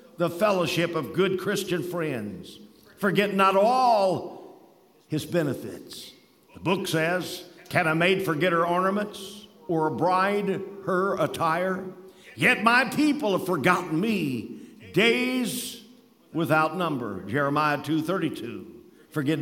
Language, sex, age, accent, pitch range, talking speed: English, male, 50-69, American, 160-200 Hz, 115 wpm